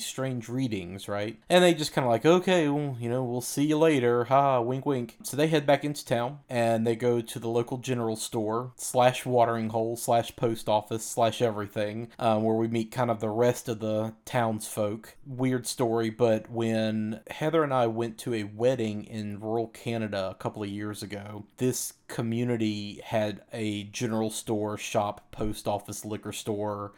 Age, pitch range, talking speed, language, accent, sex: 30-49, 110-130 Hz, 180 wpm, English, American, male